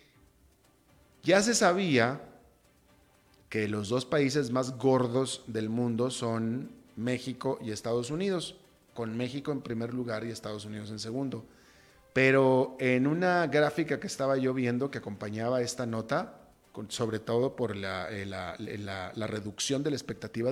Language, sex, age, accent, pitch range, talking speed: Spanish, male, 40-59, Mexican, 110-140 Hz, 145 wpm